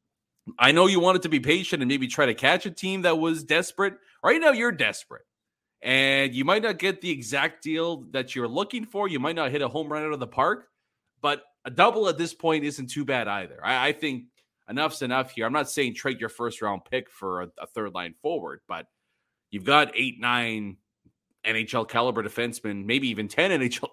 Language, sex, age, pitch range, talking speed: English, male, 30-49, 115-165 Hz, 215 wpm